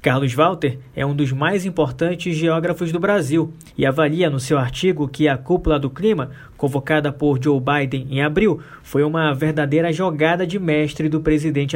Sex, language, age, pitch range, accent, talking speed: male, Portuguese, 20-39, 140-175 Hz, Brazilian, 175 wpm